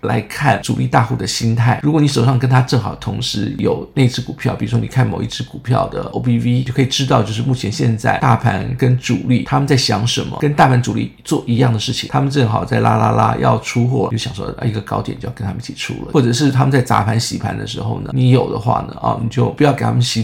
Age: 50-69